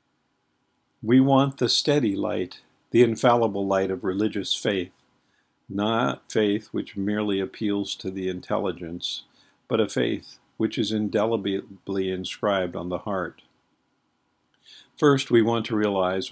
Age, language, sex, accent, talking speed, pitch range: 50-69, English, male, American, 125 wpm, 95-115 Hz